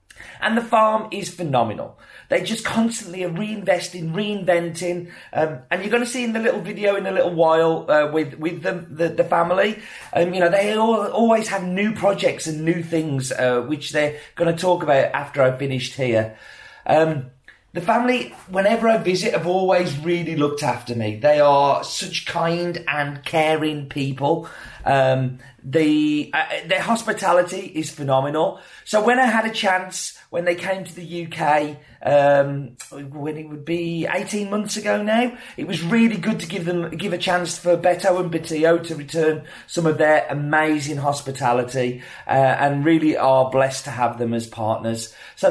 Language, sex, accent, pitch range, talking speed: English, male, British, 145-195 Hz, 175 wpm